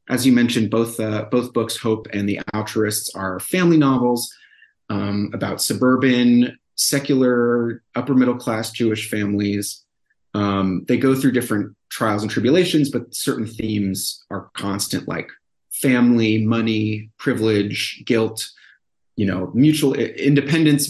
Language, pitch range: English, 105-130 Hz